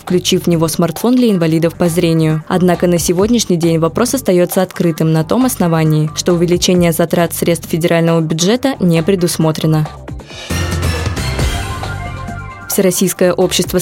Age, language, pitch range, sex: 20-39, Russian, 165-200 Hz, female